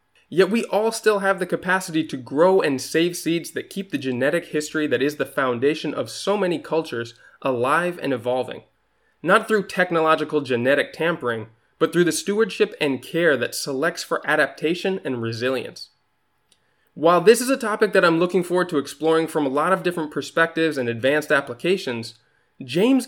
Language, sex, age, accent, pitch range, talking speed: English, male, 20-39, American, 140-190 Hz, 170 wpm